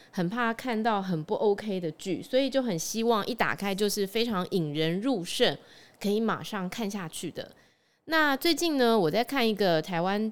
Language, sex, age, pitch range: Chinese, female, 20-39, 175-230 Hz